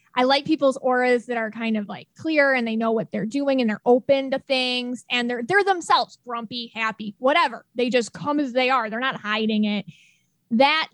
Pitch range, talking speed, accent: 215-275 Hz, 215 wpm, American